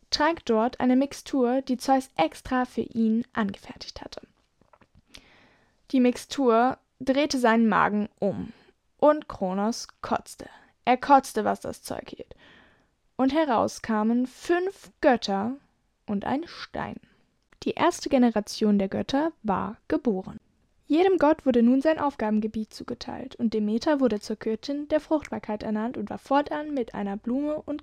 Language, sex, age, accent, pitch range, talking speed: German, female, 10-29, German, 220-285 Hz, 135 wpm